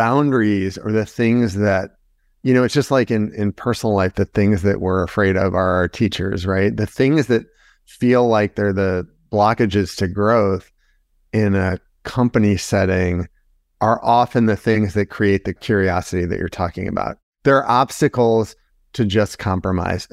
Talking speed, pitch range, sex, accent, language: 165 wpm, 95-115 Hz, male, American, English